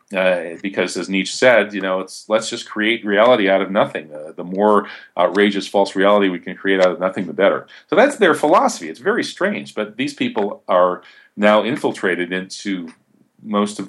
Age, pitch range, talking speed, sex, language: 40-59, 90-105 Hz, 190 wpm, male, English